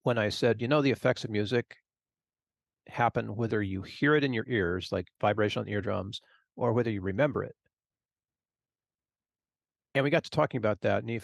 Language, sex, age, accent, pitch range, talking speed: English, male, 40-59, American, 100-130 Hz, 175 wpm